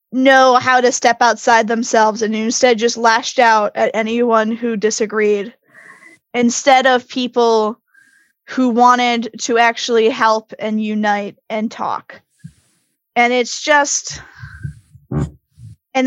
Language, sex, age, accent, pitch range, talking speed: English, female, 10-29, American, 225-260 Hz, 115 wpm